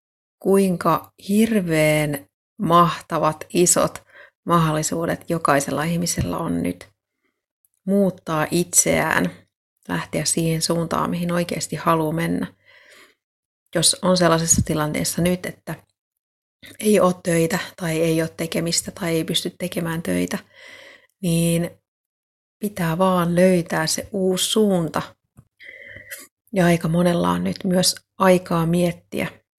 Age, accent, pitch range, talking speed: 30-49, native, 150-185 Hz, 105 wpm